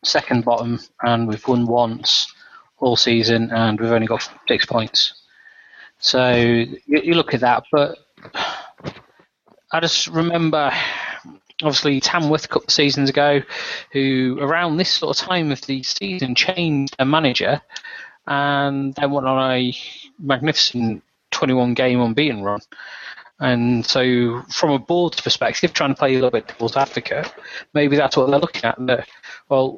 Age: 20-39